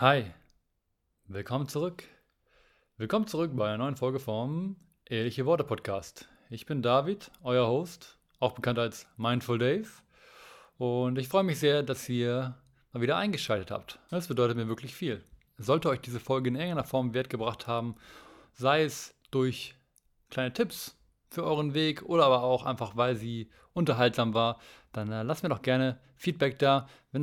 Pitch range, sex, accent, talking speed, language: 115-140 Hz, male, German, 165 wpm, German